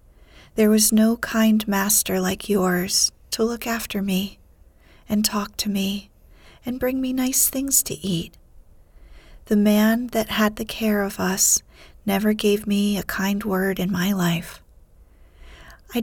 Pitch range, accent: 175-215 Hz, American